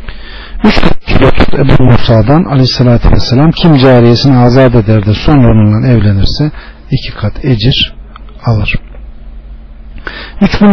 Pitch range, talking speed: 120-150 Hz, 105 wpm